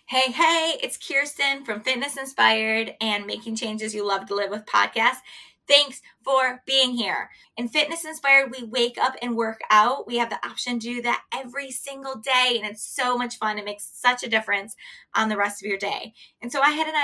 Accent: American